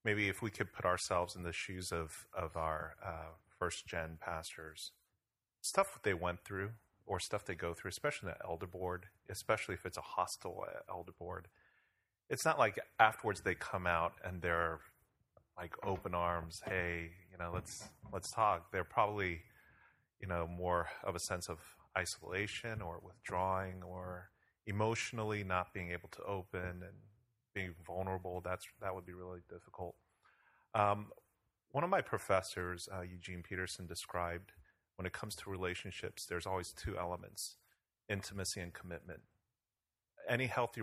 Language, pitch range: English, 90-100 Hz